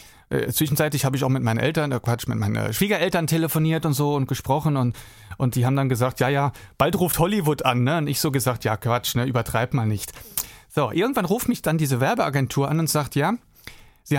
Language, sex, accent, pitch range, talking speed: German, male, German, 130-165 Hz, 225 wpm